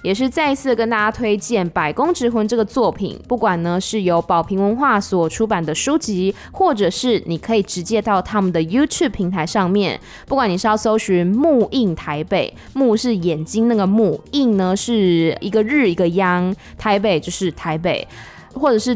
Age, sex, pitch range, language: 20-39, female, 180-235 Hz, Chinese